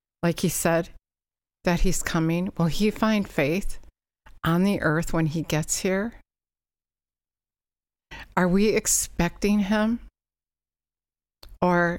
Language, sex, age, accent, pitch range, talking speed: English, female, 60-79, American, 145-190 Hz, 110 wpm